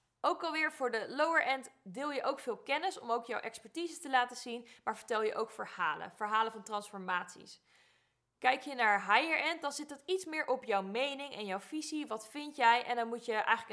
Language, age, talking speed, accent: Dutch, 20-39, 210 wpm, Dutch